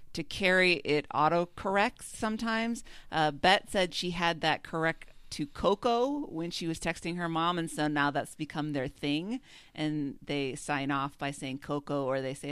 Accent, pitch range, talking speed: American, 145-195 Hz, 175 wpm